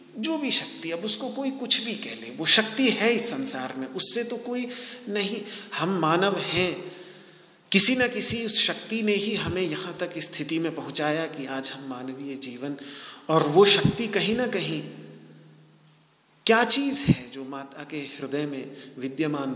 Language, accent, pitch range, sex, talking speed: Hindi, native, 150-235 Hz, male, 170 wpm